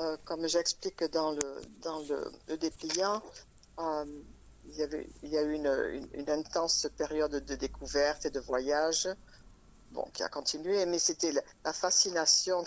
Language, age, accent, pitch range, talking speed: French, 50-69, French, 130-165 Hz, 170 wpm